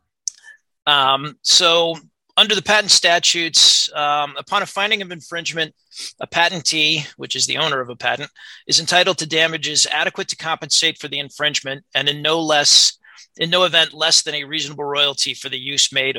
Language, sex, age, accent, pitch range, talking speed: English, male, 40-59, American, 135-165 Hz, 175 wpm